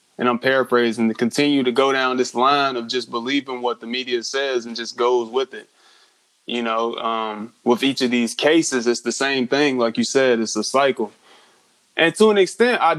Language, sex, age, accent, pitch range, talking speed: English, male, 20-39, American, 120-145 Hz, 210 wpm